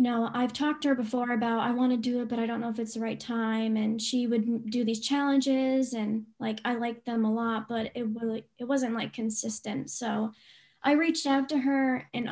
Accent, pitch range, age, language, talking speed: American, 225-250 Hz, 10-29, English, 240 wpm